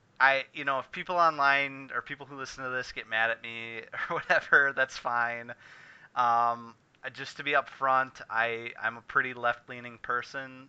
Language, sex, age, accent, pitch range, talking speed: English, male, 30-49, American, 115-135 Hz, 175 wpm